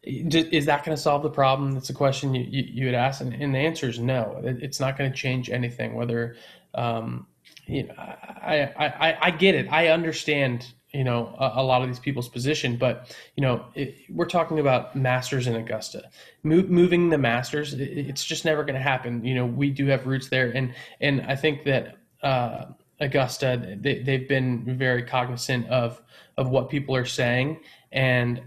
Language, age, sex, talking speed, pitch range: English, 20-39, male, 200 wpm, 125-145 Hz